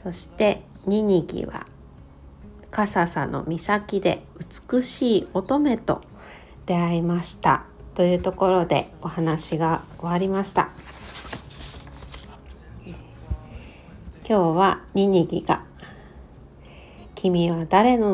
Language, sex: Japanese, female